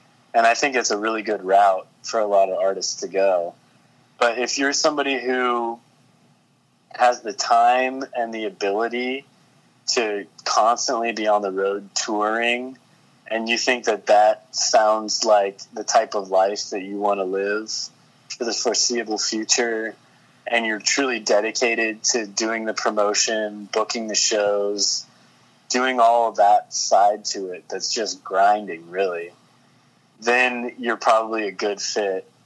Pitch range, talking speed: 100-120 Hz, 150 wpm